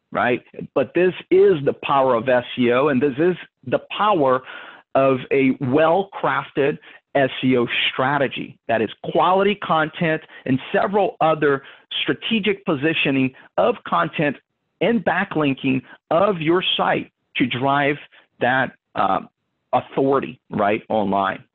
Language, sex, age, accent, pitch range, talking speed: English, male, 50-69, American, 135-180 Hz, 115 wpm